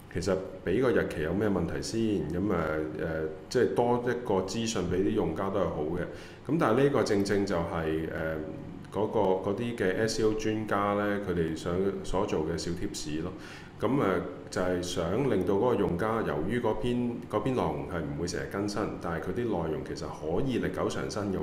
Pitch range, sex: 85-105 Hz, male